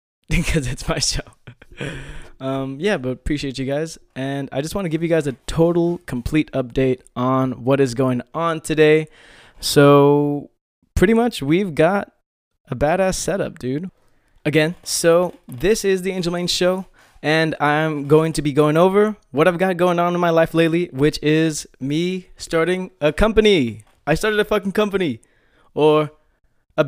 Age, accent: 20-39, American